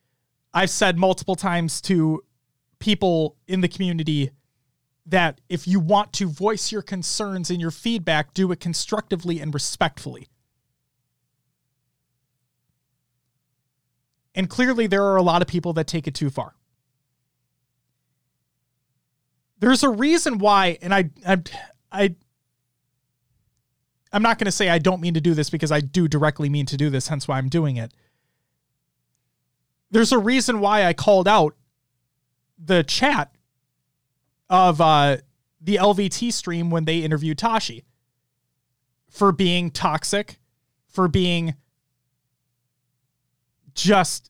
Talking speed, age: 125 wpm, 30-49